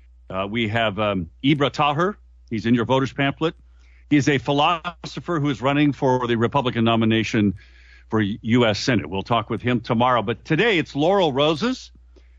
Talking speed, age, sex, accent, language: 165 wpm, 50-69, male, American, English